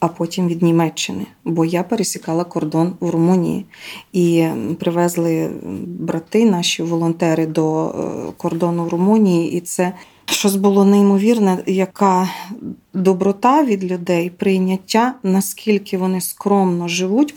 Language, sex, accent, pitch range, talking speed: Ukrainian, female, native, 180-210 Hz, 115 wpm